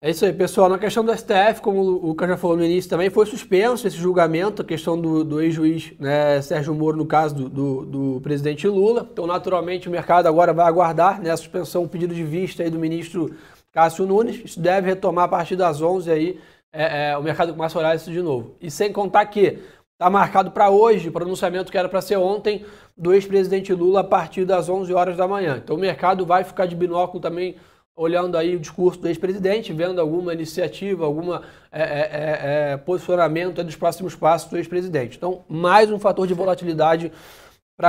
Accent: Brazilian